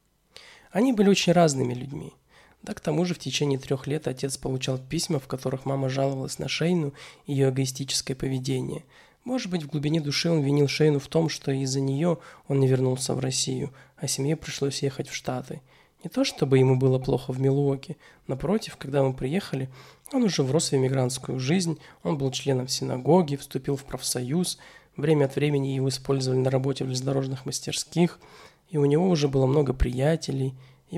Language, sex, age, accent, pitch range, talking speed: Russian, male, 20-39, native, 130-160 Hz, 180 wpm